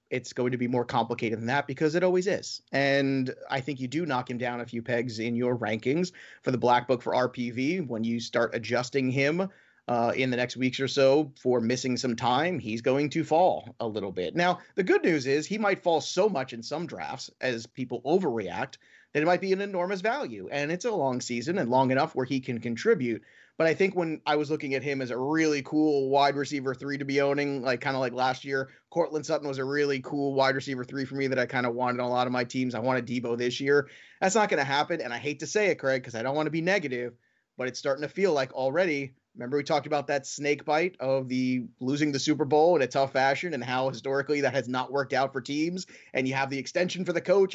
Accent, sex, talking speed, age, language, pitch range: American, male, 255 wpm, 30-49, English, 125-155 Hz